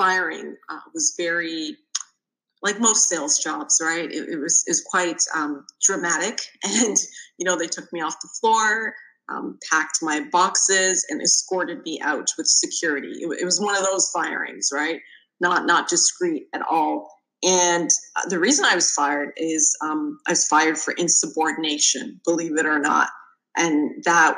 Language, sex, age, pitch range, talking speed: English, female, 30-49, 165-230 Hz, 165 wpm